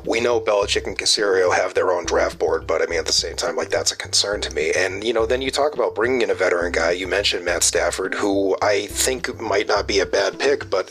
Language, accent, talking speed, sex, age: English, American, 270 wpm, male, 40-59